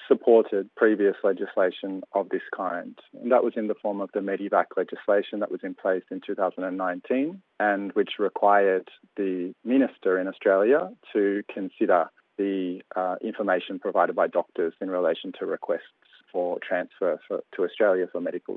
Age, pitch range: 30-49, 100-155 Hz